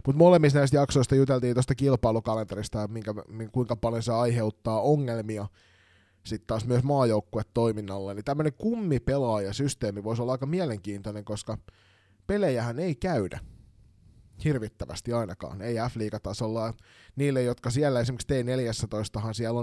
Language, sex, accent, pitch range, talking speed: Finnish, male, native, 105-125 Hz, 130 wpm